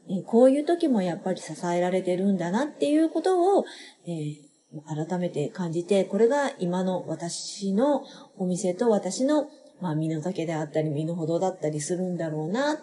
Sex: female